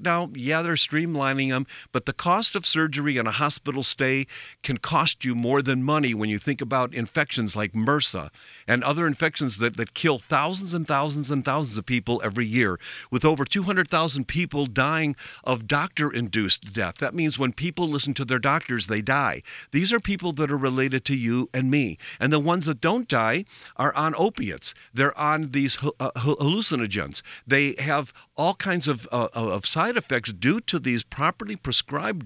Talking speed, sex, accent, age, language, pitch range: 180 wpm, male, American, 50-69, English, 125-165 Hz